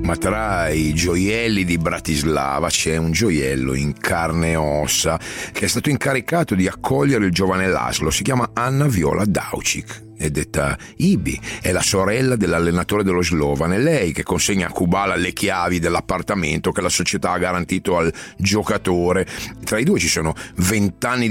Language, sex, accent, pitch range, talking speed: Italian, male, native, 85-120 Hz, 165 wpm